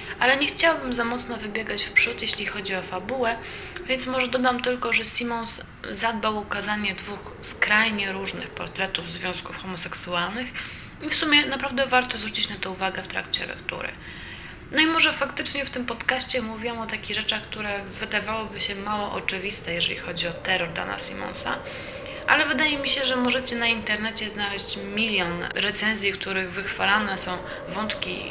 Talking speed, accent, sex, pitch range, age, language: 165 wpm, native, female, 195-255 Hz, 20-39, Polish